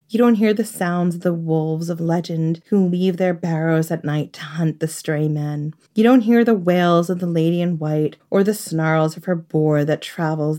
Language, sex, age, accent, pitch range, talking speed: English, female, 30-49, American, 160-185 Hz, 220 wpm